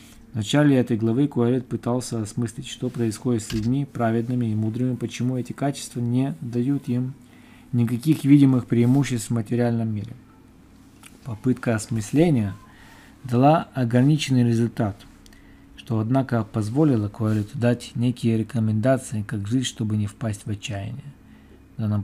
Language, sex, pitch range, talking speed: Russian, male, 110-130 Hz, 130 wpm